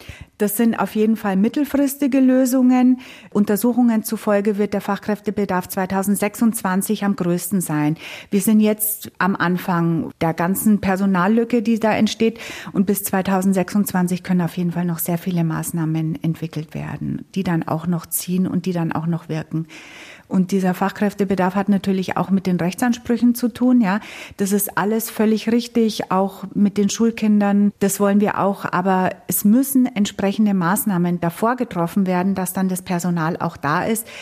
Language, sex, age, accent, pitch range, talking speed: German, female, 30-49, German, 180-210 Hz, 160 wpm